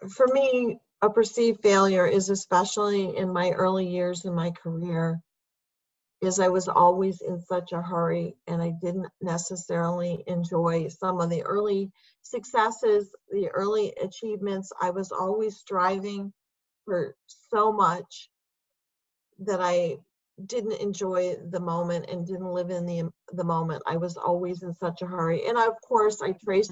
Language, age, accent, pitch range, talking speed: English, 40-59, American, 175-200 Hz, 150 wpm